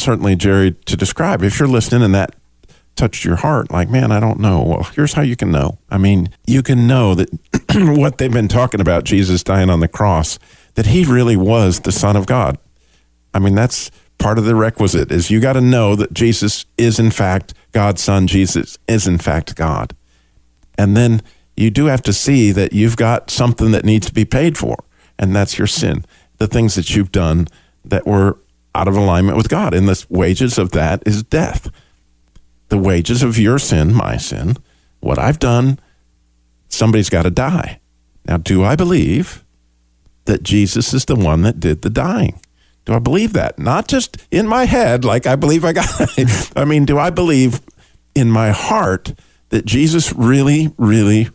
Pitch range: 85-120 Hz